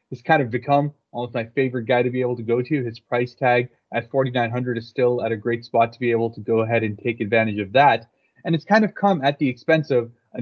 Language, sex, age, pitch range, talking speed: English, male, 20-39, 115-135 Hz, 265 wpm